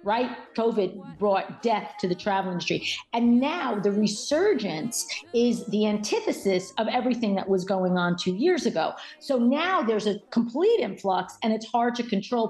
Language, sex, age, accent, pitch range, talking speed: English, female, 40-59, American, 190-240 Hz, 170 wpm